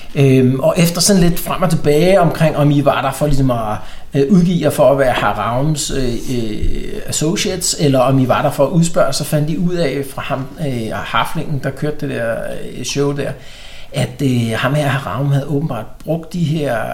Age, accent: 60-79, native